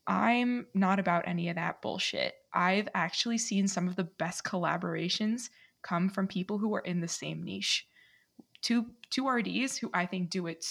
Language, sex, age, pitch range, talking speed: English, female, 20-39, 180-245 Hz, 180 wpm